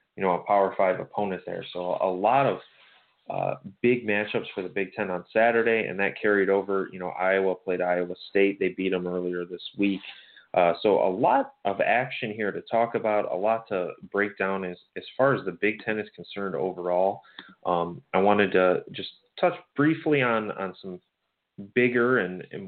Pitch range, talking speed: 90-110 Hz, 195 wpm